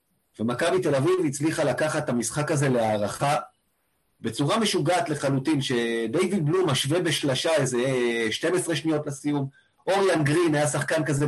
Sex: male